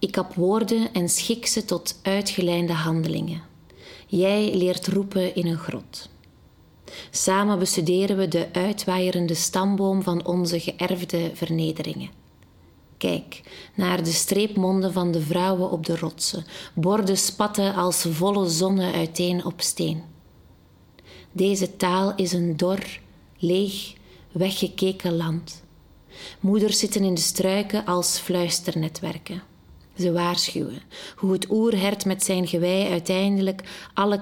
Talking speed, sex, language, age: 120 wpm, female, Dutch, 30-49